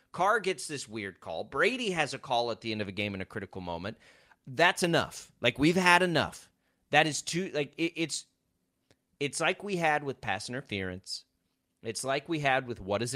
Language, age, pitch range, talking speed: English, 30-49, 110-155 Hz, 195 wpm